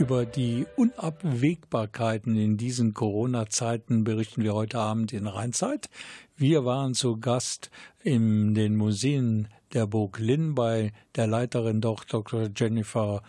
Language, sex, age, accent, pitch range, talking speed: German, male, 50-69, German, 110-140 Hz, 125 wpm